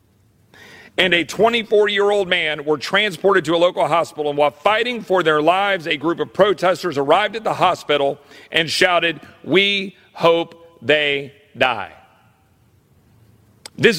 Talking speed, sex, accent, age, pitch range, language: 135 wpm, male, American, 50-69, 145-225 Hz, English